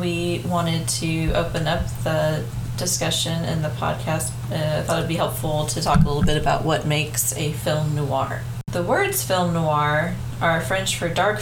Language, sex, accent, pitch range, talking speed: English, female, American, 120-160 Hz, 190 wpm